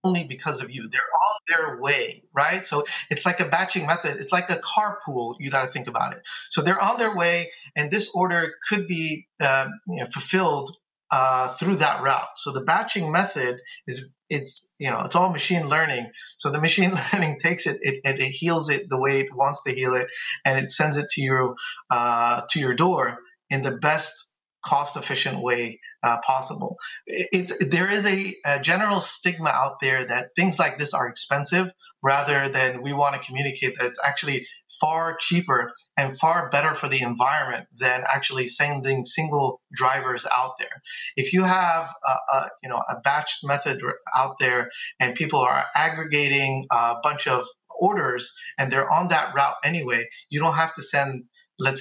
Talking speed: 185 wpm